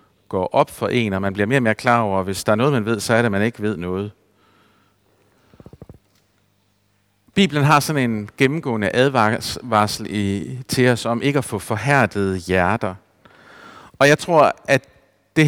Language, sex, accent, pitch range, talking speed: Danish, male, native, 105-135 Hz, 180 wpm